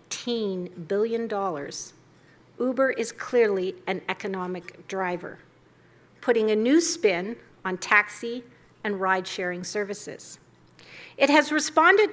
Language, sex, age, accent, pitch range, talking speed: English, female, 50-69, American, 195-245 Hz, 95 wpm